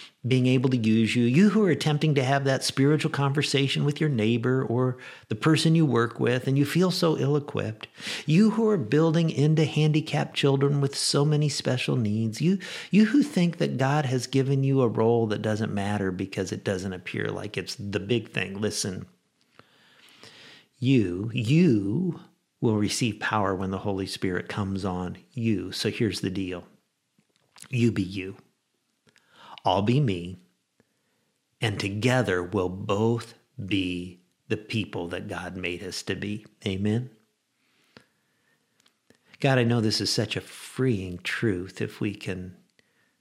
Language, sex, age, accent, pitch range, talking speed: English, male, 50-69, American, 100-140 Hz, 155 wpm